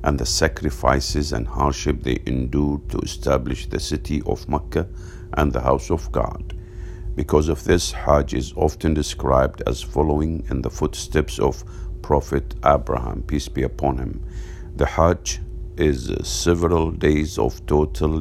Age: 50-69